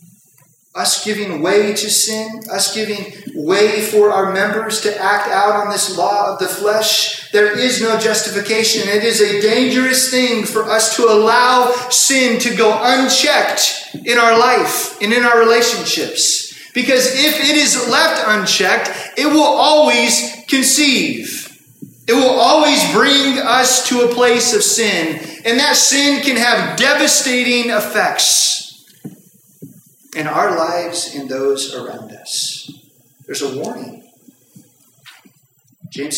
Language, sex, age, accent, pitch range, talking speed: English, male, 30-49, American, 150-240 Hz, 135 wpm